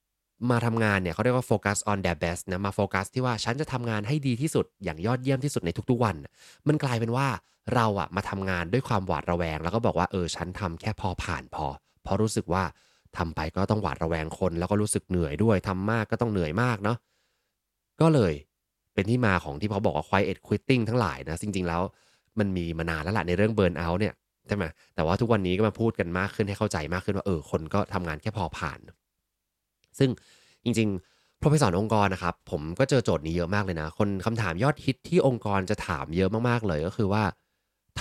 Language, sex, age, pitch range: Thai, male, 20-39, 90-115 Hz